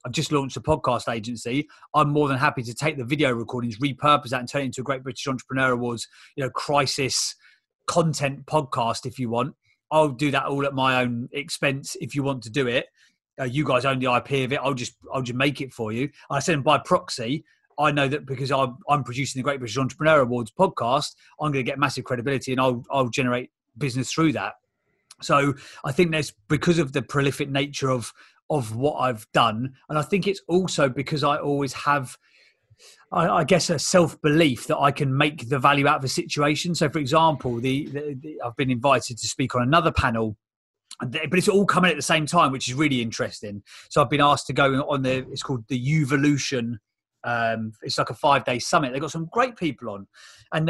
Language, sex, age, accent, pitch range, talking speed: English, male, 30-49, British, 130-150 Hz, 215 wpm